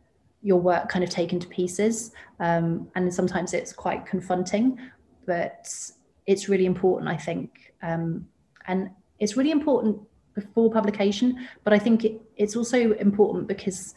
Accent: British